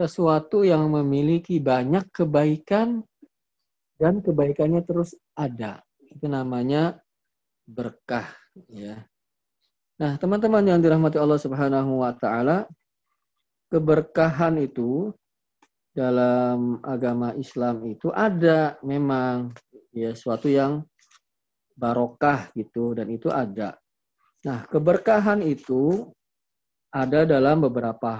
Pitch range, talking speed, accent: 125-170 Hz, 90 wpm, native